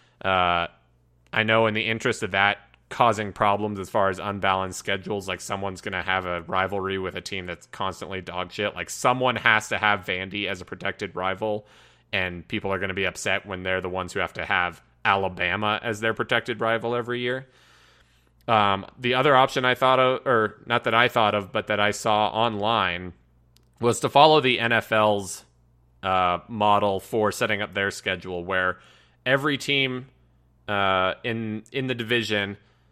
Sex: male